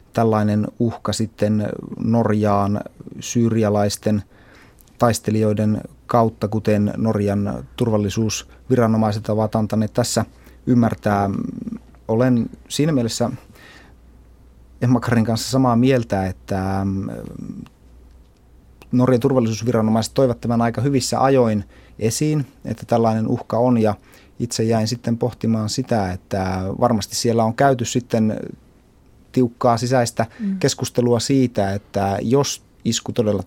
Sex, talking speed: male, 95 wpm